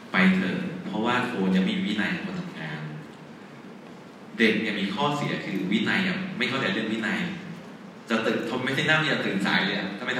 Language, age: Thai, 30-49